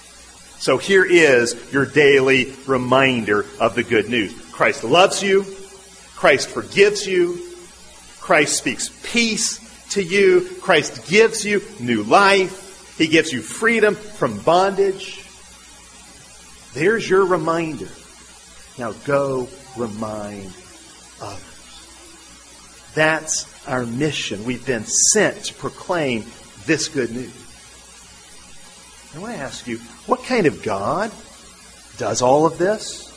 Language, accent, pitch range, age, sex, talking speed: English, American, 140-225 Hz, 40-59, male, 115 wpm